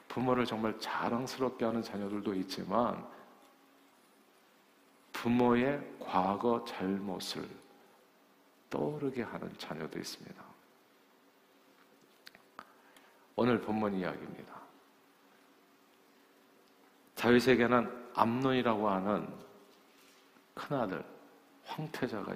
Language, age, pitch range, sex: Korean, 50-69, 100-120 Hz, male